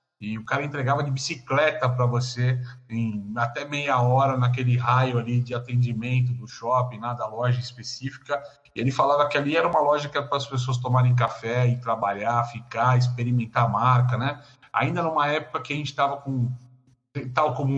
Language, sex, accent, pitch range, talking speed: Portuguese, male, Brazilian, 125-135 Hz, 185 wpm